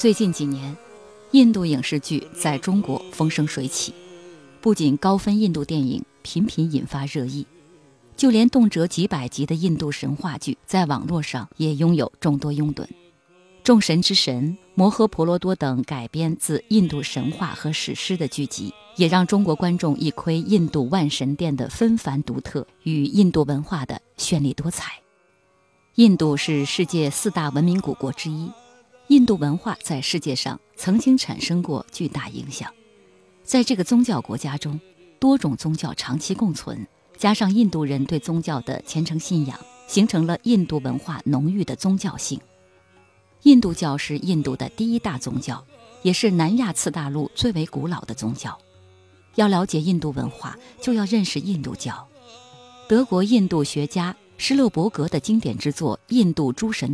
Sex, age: female, 30-49